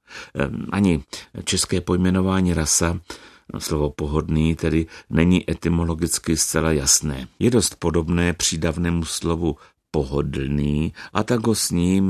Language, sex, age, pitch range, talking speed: Czech, male, 60-79, 75-100 Hz, 110 wpm